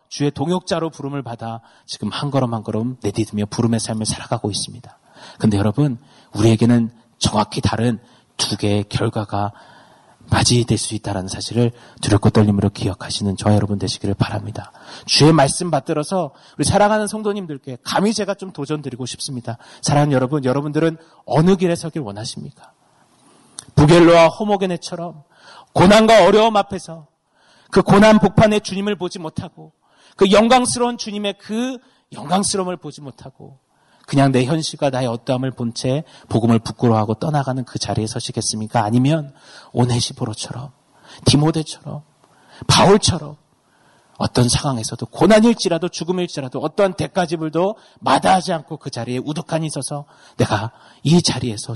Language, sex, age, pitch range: Korean, male, 30-49, 115-165 Hz